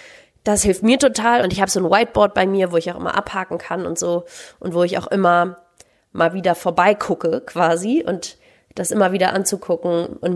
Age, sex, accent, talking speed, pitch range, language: 20-39, female, German, 205 wpm, 175-205 Hz, German